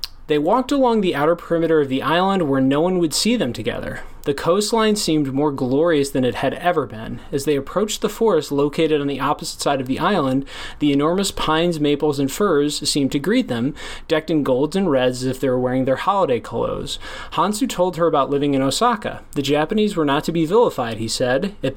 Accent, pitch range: American, 135-170 Hz